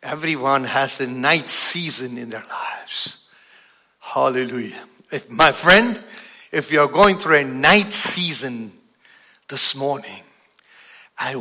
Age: 60-79